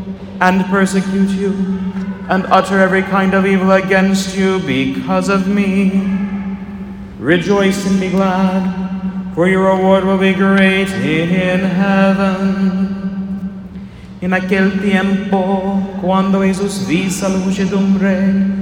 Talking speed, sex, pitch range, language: 110 wpm, male, 190-195 Hz, English